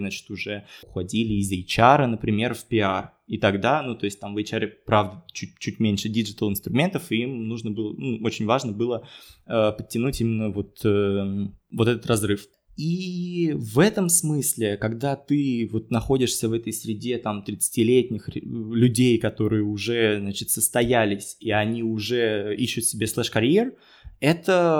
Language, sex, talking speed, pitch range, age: Russian, male, 150 wpm, 110-130 Hz, 20-39